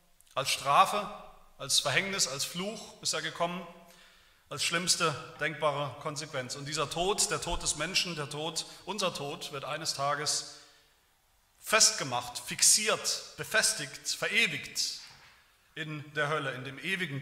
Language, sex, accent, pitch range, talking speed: German, male, German, 130-170 Hz, 130 wpm